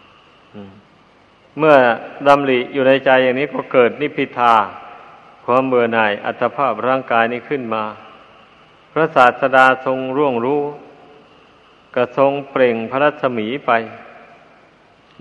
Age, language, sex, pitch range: 60-79, Thai, male, 115-130 Hz